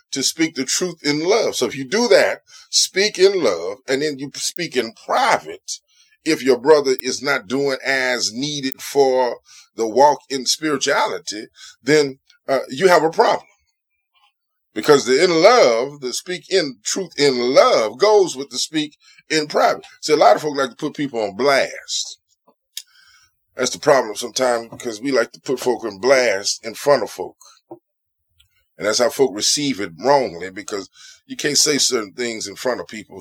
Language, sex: English, male